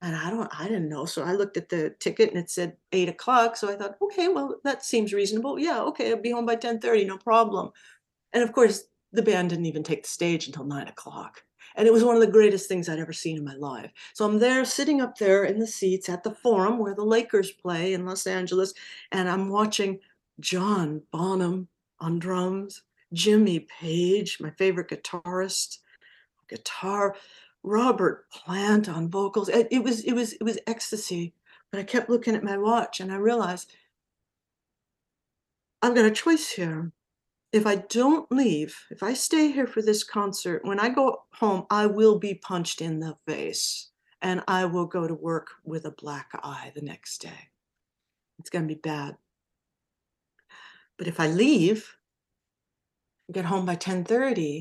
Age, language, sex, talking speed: 50-69, English, female, 185 wpm